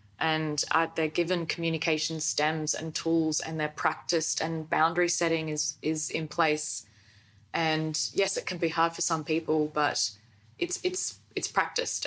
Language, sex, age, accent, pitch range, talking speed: English, female, 20-39, Australian, 150-200 Hz, 155 wpm